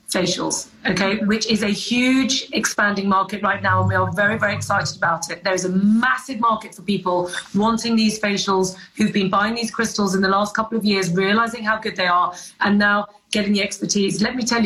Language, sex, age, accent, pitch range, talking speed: English, female, 40-59, British, 190-225 Hz, 210 wpm